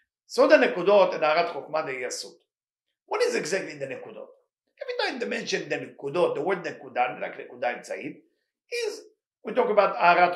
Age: 50-69